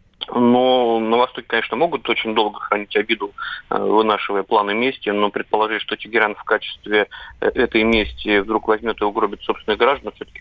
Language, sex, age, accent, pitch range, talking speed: Russian, male, 30-49, native, 105-115 Hz, 155 wpm